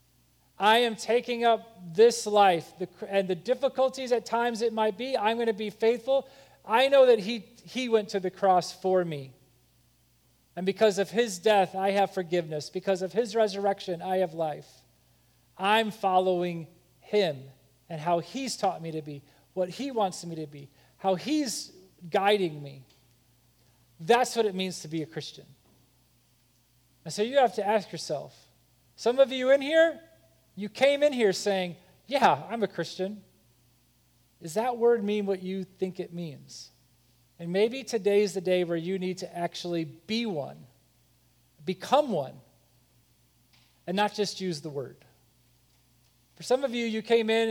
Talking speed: 165 wpm